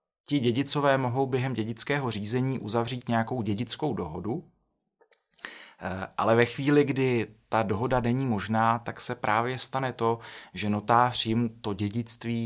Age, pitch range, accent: 30-49, 105-125 Hz, native